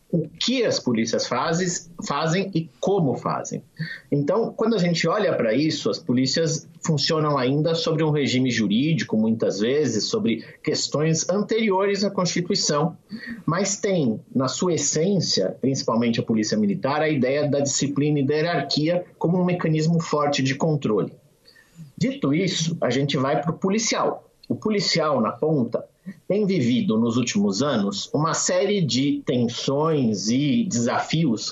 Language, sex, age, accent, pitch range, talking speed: Portuguese, male, 50-69, Brazilian, 140-170 Hz, 145 wpm